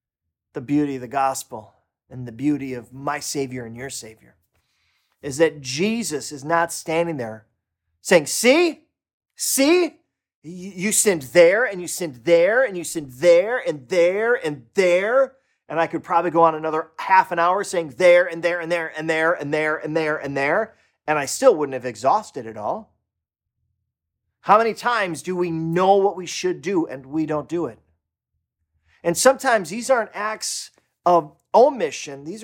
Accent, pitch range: American, 135-205 Hz